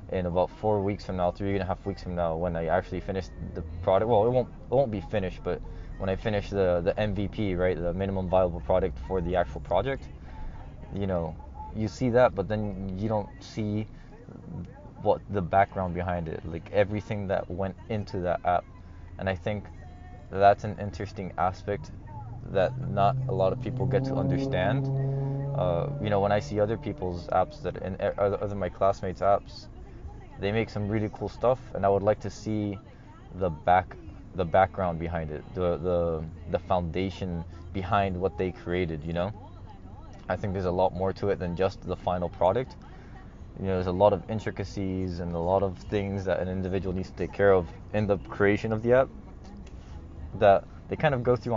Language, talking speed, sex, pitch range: English, 200 wpm, male, 90-105 Hz